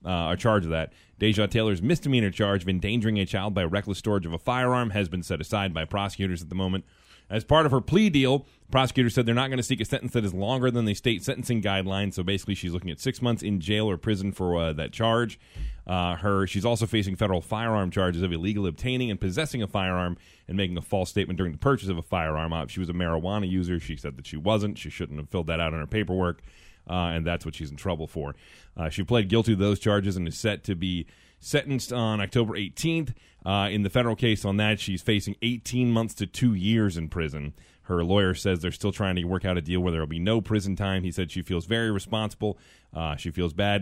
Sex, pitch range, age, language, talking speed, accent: male, 85-110 Hz, 30-49, English, 250 wpm, American